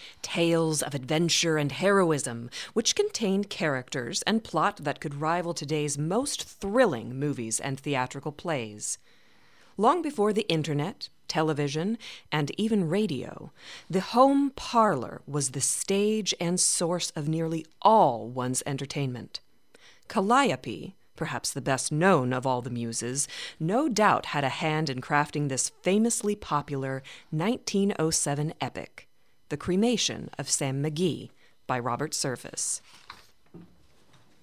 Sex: female